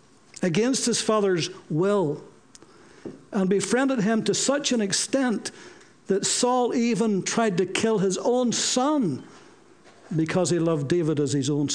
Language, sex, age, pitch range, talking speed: English, male, 60-79, 170-220 Hz, 140 wpm